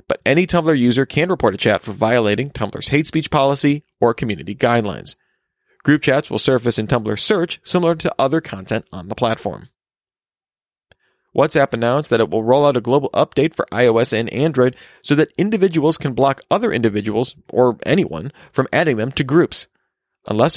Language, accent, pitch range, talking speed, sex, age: English, American, 115-150 Hz, 175 wpm, male, 30-49